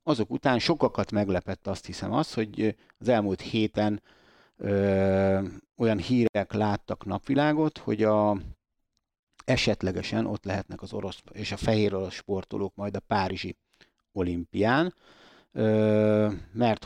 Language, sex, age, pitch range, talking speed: Hungarian, male, 60-79, 100-110 Hz, 110 wpm